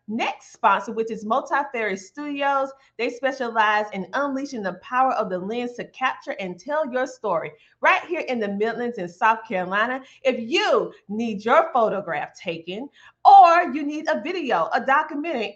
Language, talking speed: English, 165 wpm